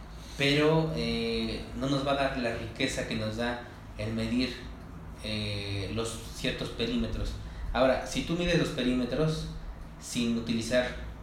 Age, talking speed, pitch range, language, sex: 30-49, 140 wpm, 105-130 Hz, Spanish, male